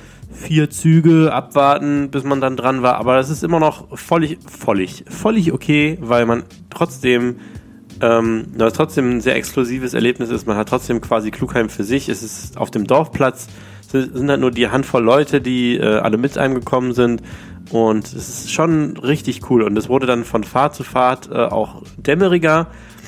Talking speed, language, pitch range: 180 wpm, German, 110-140 Hz